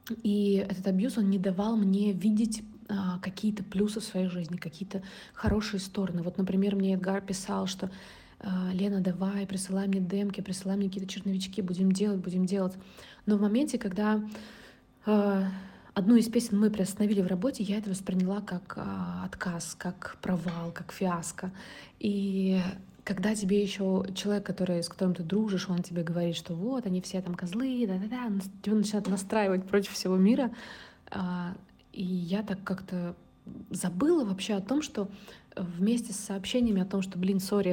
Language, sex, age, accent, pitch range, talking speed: Russian, female, 20-39, native, 185-210 Hz, 160 wpm